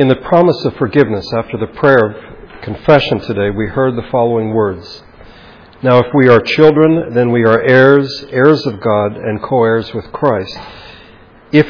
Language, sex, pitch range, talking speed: English, male, 115-140 Hz, 170 wpm